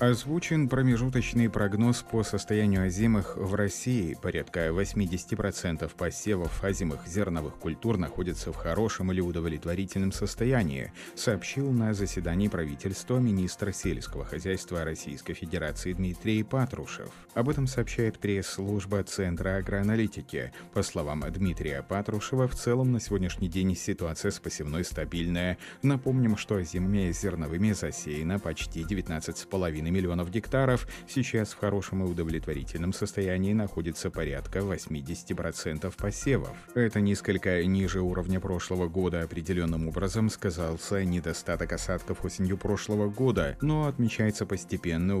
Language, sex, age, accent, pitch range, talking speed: Russian, male, 30-49, native, 85-105 Hz, 115 wpm